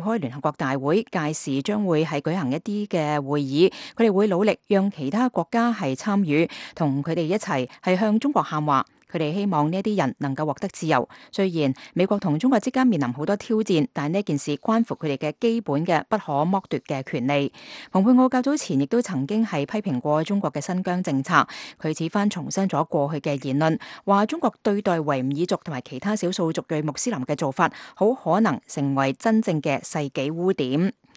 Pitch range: 150-205 Hz